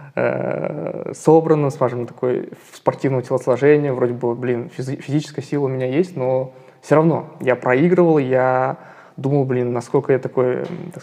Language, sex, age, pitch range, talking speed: Russian, male, 20-39, 125-150 Hz, 140 wpm